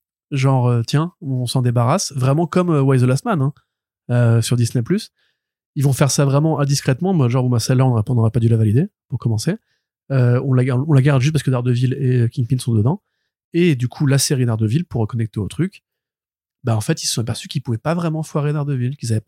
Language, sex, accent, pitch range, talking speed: French, male, French, 120-145 Hz, 225 wpm